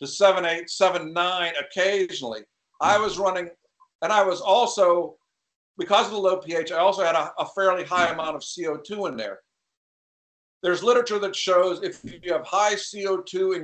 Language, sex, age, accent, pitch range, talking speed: English, male, 50-69, American, 155-195 Hz, 175 wpm